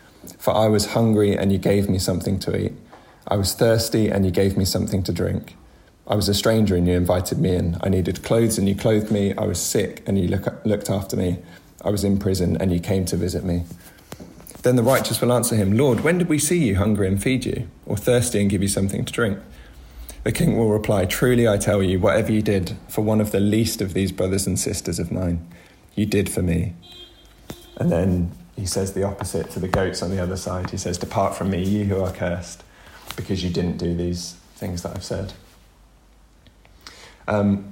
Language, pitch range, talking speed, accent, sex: English, 90-105 Hz, 220 wpm, British, male